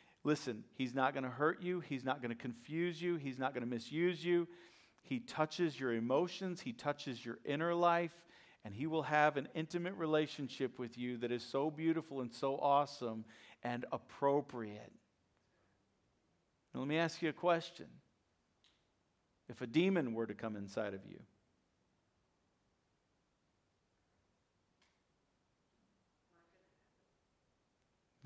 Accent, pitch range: American, 120-170 Hz